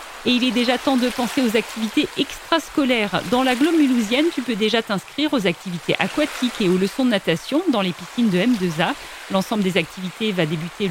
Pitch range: 200-285 Hz